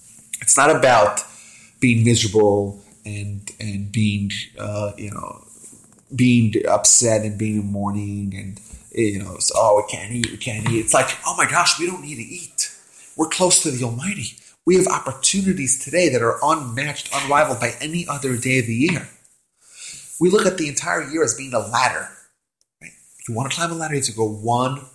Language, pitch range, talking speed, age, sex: English, 110-165 Hz, 190 wpm, 30-49, male